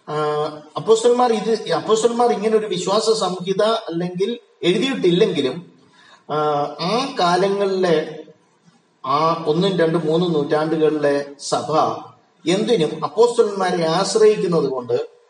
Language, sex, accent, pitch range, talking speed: Malayalam, male, native, 160-210 Hz, 80 wpm